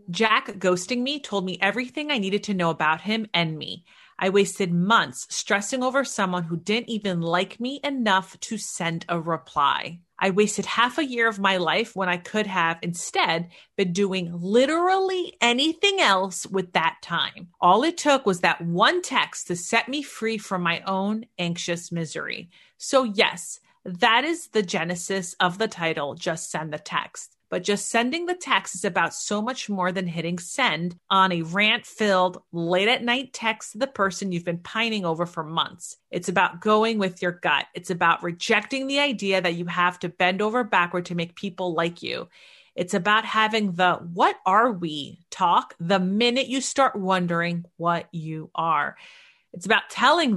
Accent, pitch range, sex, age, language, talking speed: American, 175-230 Hz, female, 30-49, English, 175 wpm